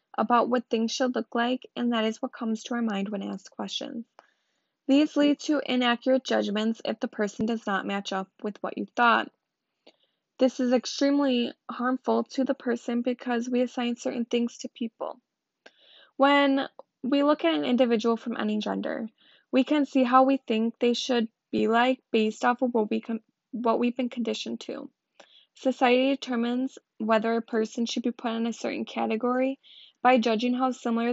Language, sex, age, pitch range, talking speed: English, female, 10-29, 225-260 Hz, 175 wpm